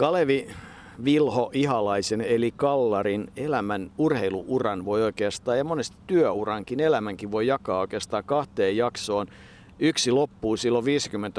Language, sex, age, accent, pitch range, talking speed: Finnish, male, 50-69, native, 110-135 Hz, 110 wpm